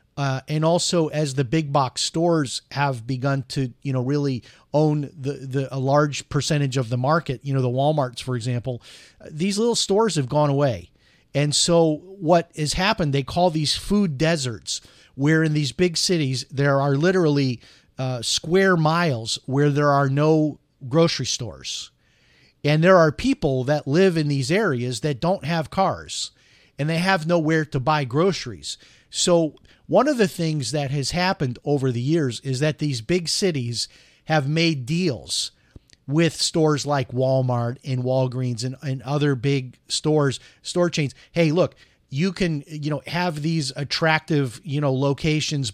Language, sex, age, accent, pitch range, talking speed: English, male, 40-59, American, 130-160 Hz, 165 wpm